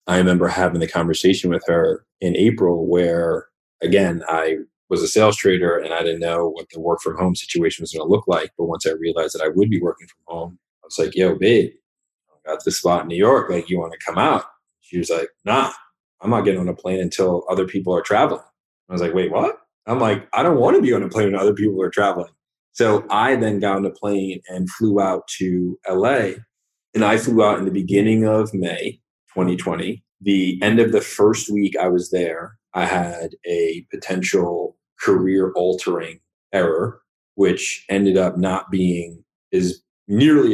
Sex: male